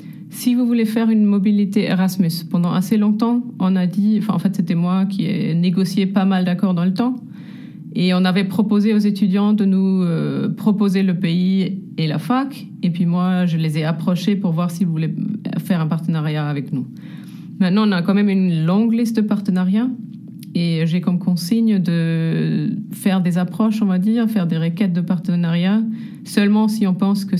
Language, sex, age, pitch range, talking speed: French, female, 30-49, 175-210 Hz, 195 wpm